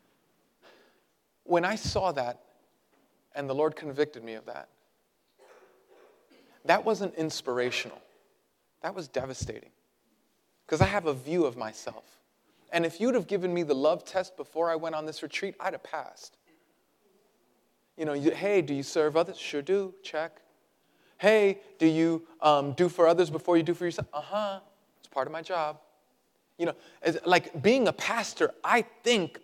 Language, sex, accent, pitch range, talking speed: English, male, American, 145-185 Hz, 165 wpm